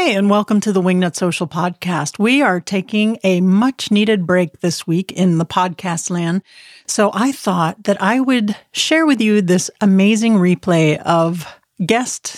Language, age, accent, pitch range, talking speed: English, 40-59, American, 175-225 Hz, 165 wpm